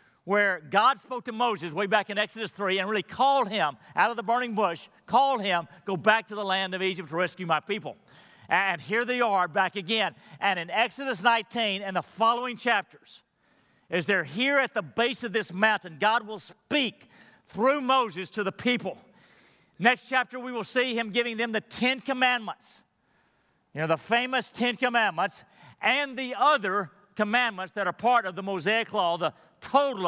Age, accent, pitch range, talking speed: 50-69, American, 190-245 Hz, 185 wpm